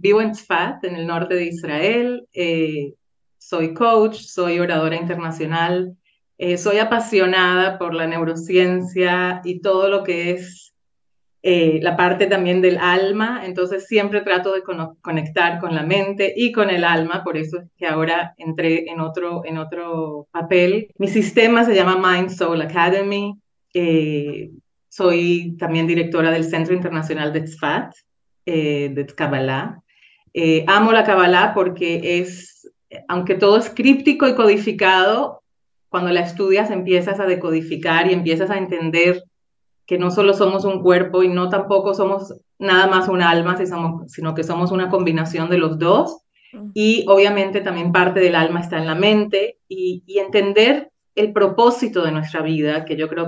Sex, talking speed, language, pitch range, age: female, 155 wpm, Spanish, 165-195 Hz, 30-49